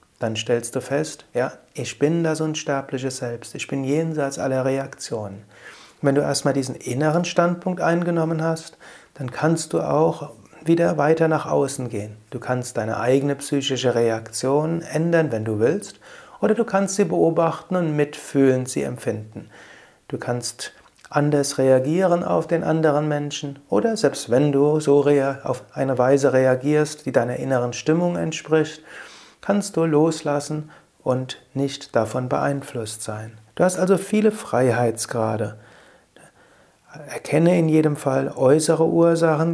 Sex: male